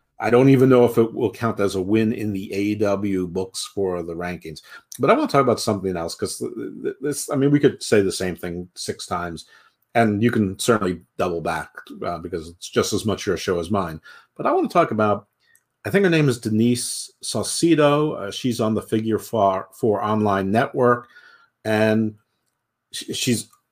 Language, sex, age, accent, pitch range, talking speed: English, male, 50-69, American, 100-125 Hz, 195 wpm